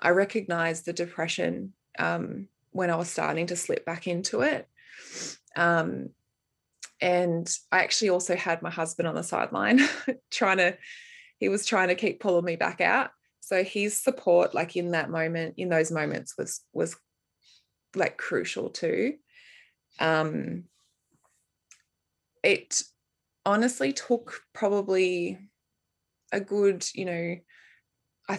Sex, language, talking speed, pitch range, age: female, English, 130 wpm, 170-205 Hz, 20-39